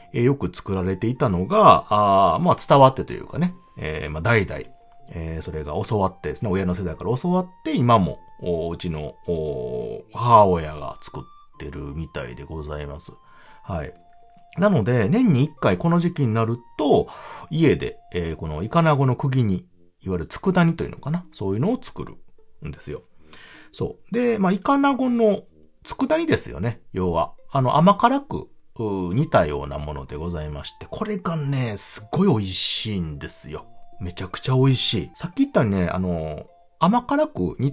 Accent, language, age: native, Japanese, 40-59